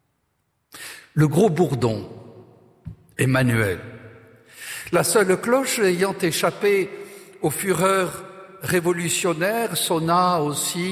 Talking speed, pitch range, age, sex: 75 wpm, 125-180 Hz, 60-79, male